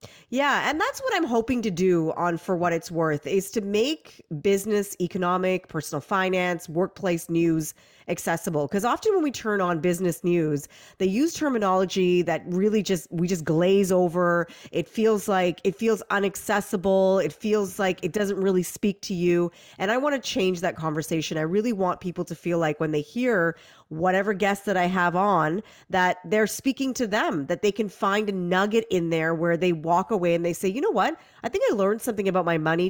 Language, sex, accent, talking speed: English, female, American, 200 wpm